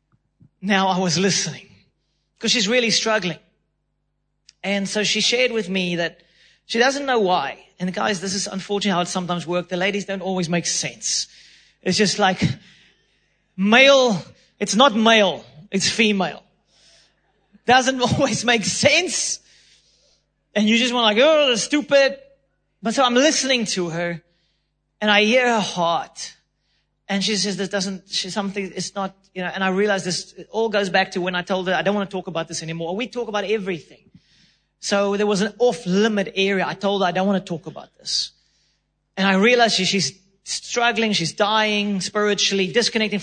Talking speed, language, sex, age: 175 wpm, English, male, 30-49